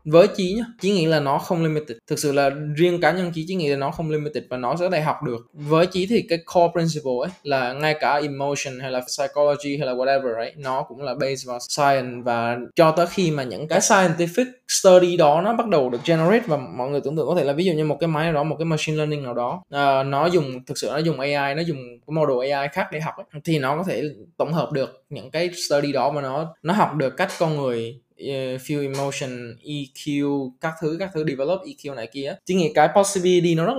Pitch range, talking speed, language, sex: 135-170 Hz, 250 wpm, Vietnamese, male